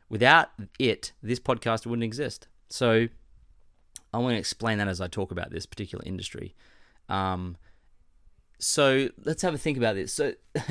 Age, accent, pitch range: 20-39, Australian, 95-130 Hz